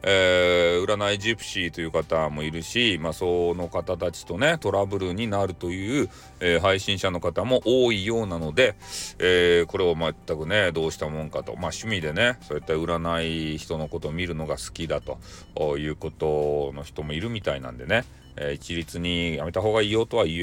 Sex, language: male, Japanese